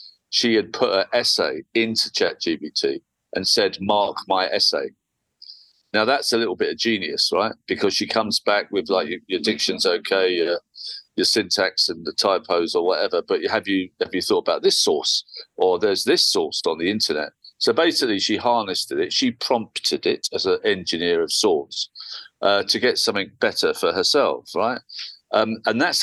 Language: English